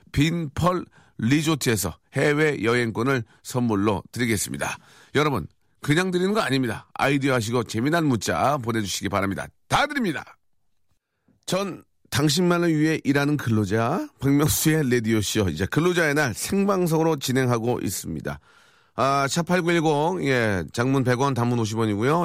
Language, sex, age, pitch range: Korean, male, 40-59, 105-140 Hz